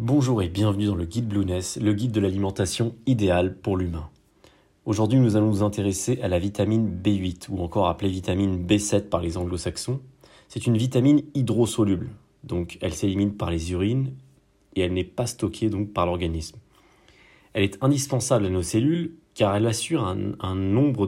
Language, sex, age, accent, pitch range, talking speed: French, male, 30-49, French, 100-125 Hz, 175 wpm